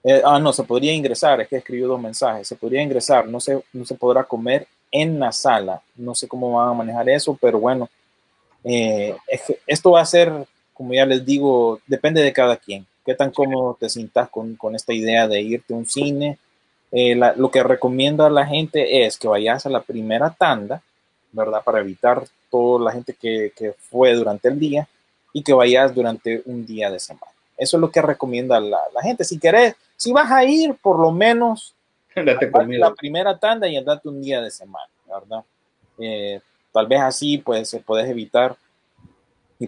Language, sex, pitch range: Spanish, male, 115-140 Hz